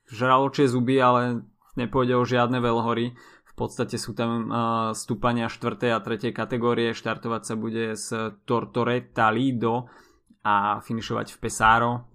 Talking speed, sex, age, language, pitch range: 135 wpm, male, 20-39, Slovak, 115-125 Hz